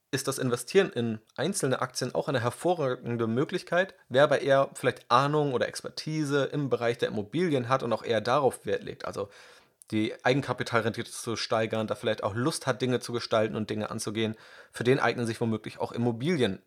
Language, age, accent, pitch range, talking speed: German, 30-49, German, 110-130 Hz, 185 wpm